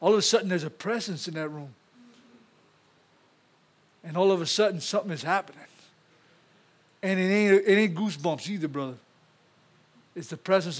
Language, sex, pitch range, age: English, male, 160-210 Hz, 60-79